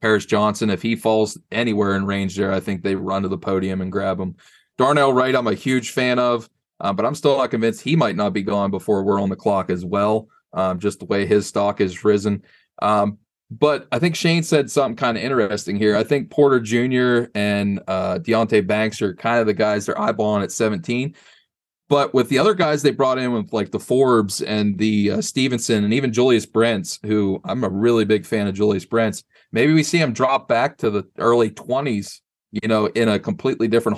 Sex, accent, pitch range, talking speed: male, American, 100-120 Hz, 220 wpm